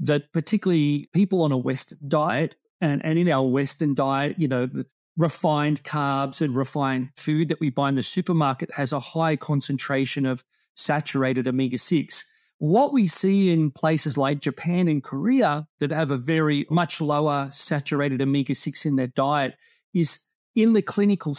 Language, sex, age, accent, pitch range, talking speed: English, male, 30-49, Australian, 135-160 Hz, 165 wpm